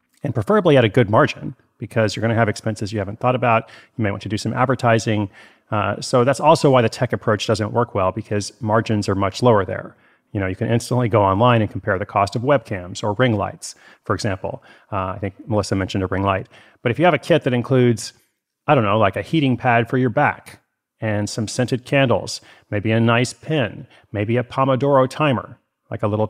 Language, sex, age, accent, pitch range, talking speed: English, male, 30-49, American, 100-125 Hz, 225 wpm